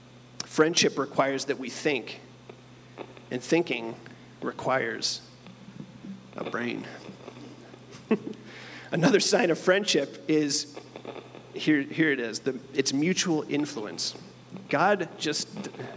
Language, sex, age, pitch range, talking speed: English, male, 40-59, 125-145 Hz, 95 wpm